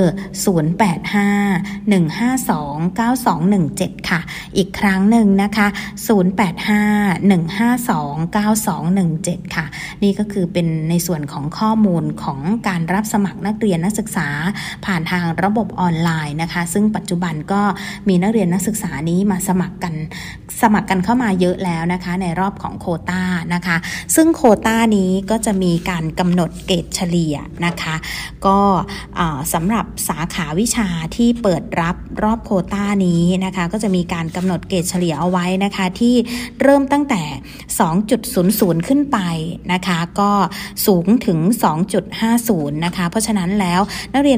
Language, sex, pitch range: Thai, female, 175-210 Hz